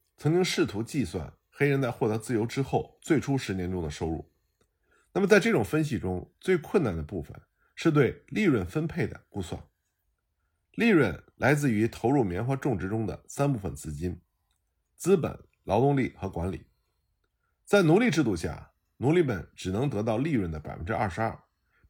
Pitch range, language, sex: 85-140 Hz, Chinese, male